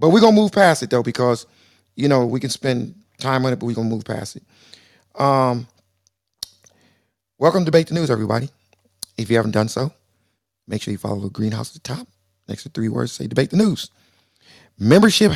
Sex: male